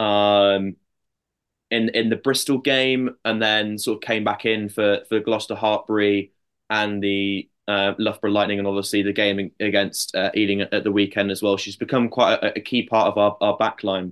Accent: British